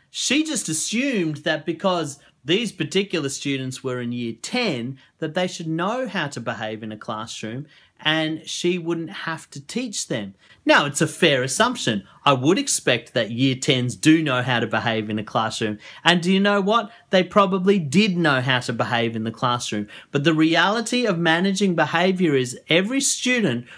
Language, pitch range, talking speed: English, 130-190 Hz, 180 wpm